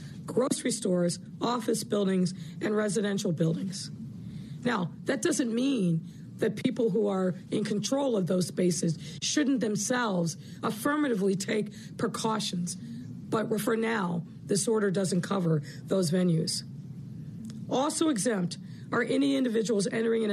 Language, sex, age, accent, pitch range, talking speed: English, female, 50-69, American, 185-240 Hz, 120 wpm